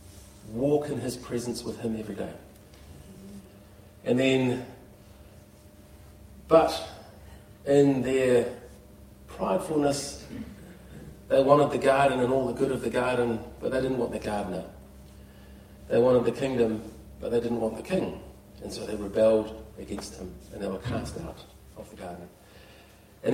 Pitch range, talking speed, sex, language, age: 100-125 Hz, 140 wpm, male, English, 40-59